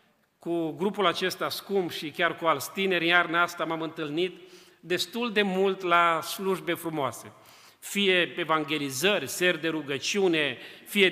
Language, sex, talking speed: Romanian, male, 135 wpm